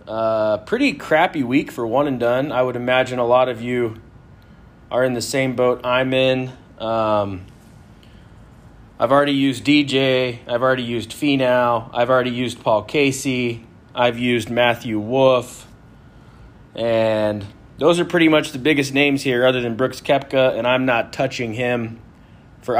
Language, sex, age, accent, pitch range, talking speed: English, male, 30-49, American, 110-135 Hz, 160 wpm